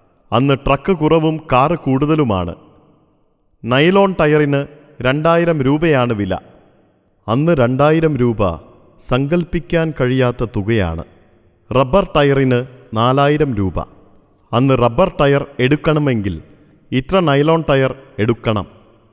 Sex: male